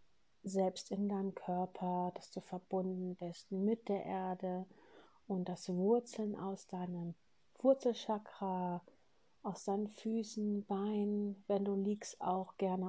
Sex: female